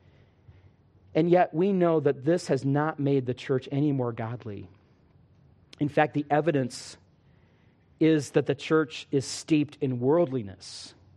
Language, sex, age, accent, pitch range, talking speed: English, male, 40-59, American, 115-160 Hz, 140 wpm